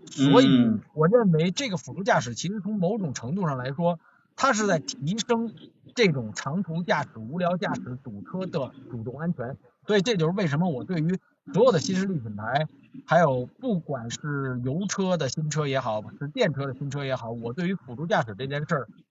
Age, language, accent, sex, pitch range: 50-69, Chinese, native, male, 140-195 Hz